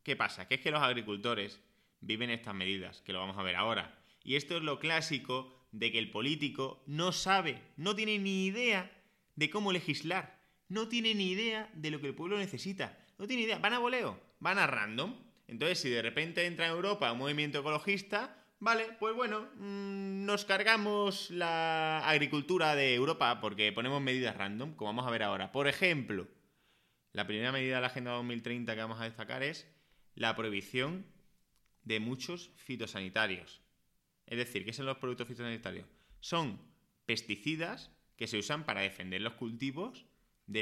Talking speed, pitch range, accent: 175 wpm, 115-185 Hz, Spanish